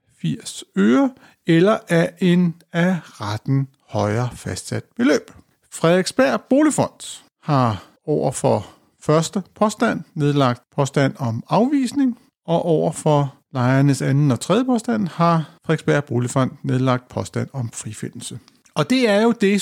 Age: 60-79